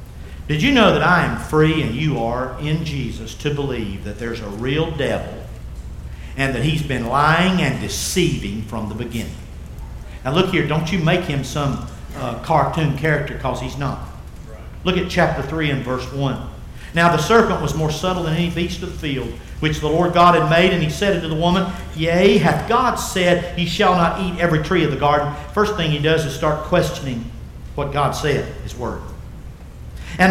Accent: American